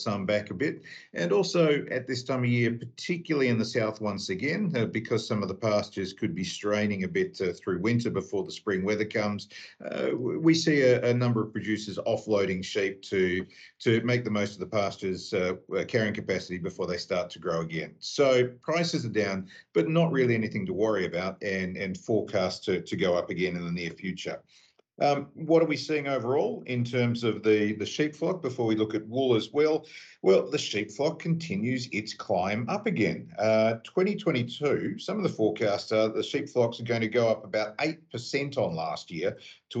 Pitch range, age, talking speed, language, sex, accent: 105-140 Hz, 50-69, 205 wpm, English, male, Australian